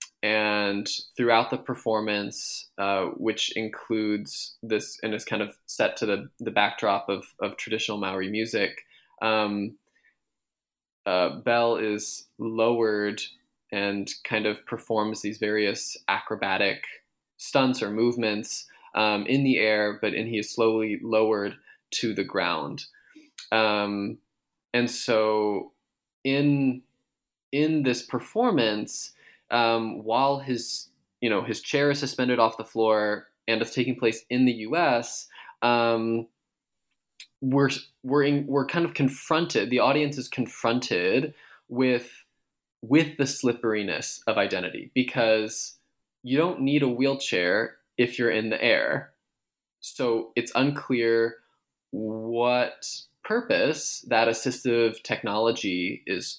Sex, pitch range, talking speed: male, 110-130 Hz, 120 wpm